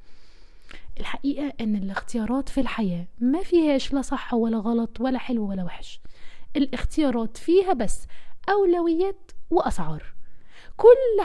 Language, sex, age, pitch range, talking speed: Arabic, female, 20-39, 245-330 Hz, 110 wpm